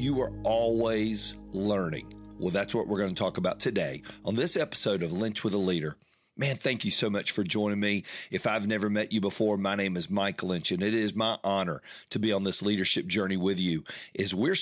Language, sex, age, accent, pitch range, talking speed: English, male, 40-59, American, 100-110 Hz, 225 wpm